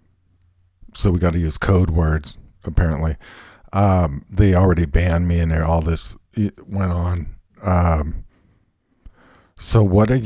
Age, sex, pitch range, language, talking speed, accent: 50-69, male, 85-110 Hz, English, 140 wpm, American